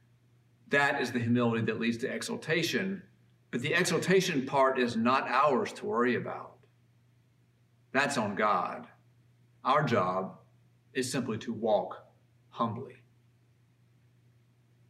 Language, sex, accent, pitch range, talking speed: English, male, American, 120-155 Hz, 115 wpm